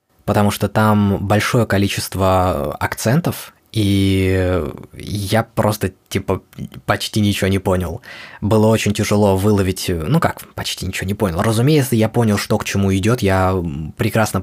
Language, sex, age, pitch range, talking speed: Russian, male, 20-39, 95-115 Hz, 135 wpm